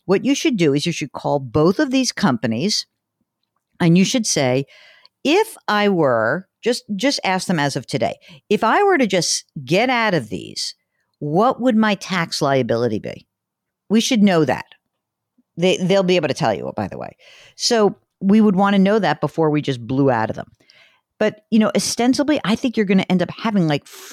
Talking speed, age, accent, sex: 210 wpm, 50-69, American, female